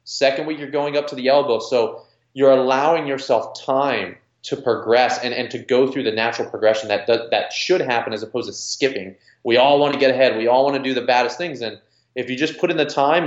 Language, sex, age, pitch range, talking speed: English, male, 20-39, 115-150 Hz, 240 wpm